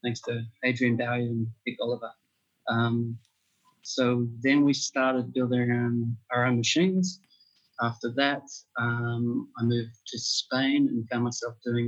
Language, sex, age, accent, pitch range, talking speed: English, male, 30-49, Australian, 115-125 Hz, 145 wpm